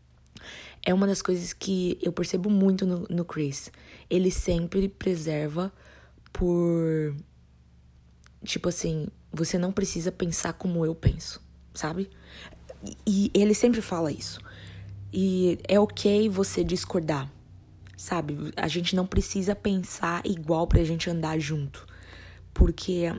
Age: 20-39